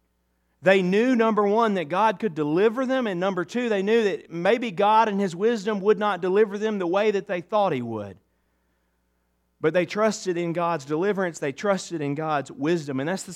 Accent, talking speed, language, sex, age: American, 200 wpm, English, male, 40-59